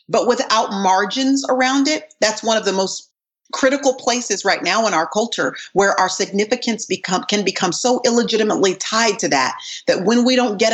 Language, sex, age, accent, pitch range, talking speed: English, female, 40-59, American, 185-235 Hz, 185 wpm